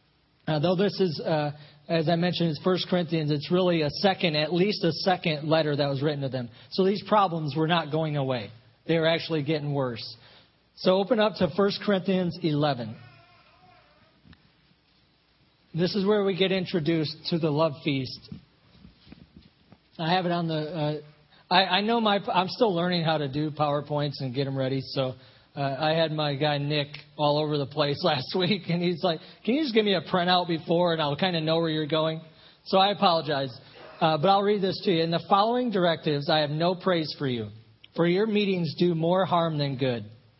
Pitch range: 145-185 Hz